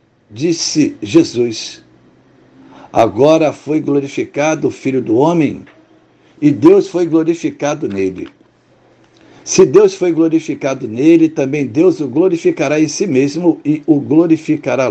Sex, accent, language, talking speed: male, Brazilian, Portuguese, 115 wpm